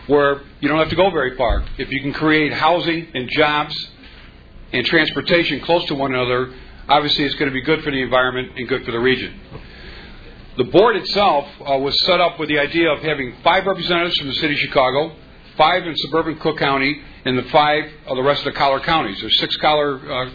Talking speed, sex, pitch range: 220 wpm, male, 130-160 Hz